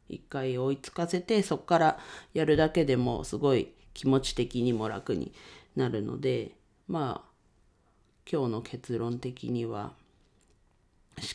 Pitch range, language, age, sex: 115-150 Hz, Japanese, 40-59, female